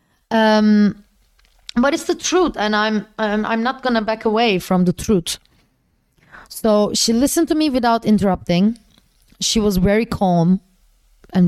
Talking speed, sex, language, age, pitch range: 140 wpm, female, English, 20-39, 190-235 Hz